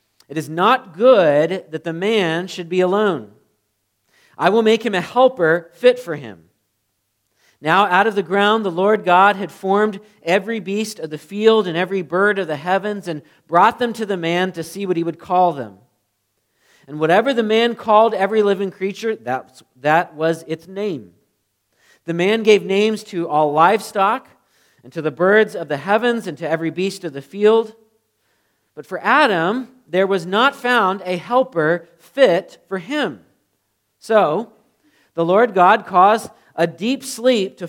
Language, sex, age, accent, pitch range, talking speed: English, male, 40-59, American, 160-215 Hz, 170 wpm